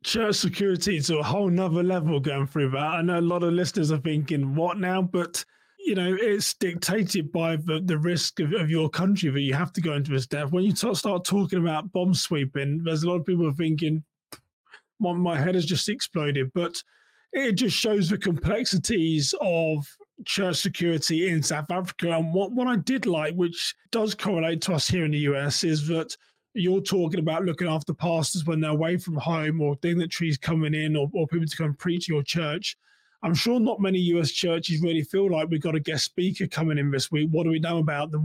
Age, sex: 20-39, male